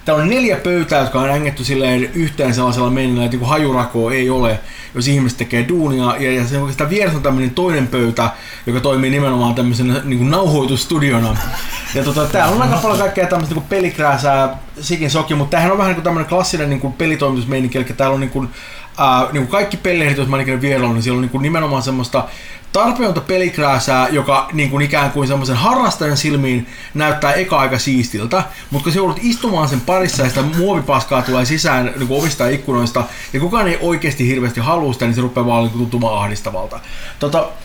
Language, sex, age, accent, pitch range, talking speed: Finnish, male, 30-49, native, 130-165 Hz, 180 wpm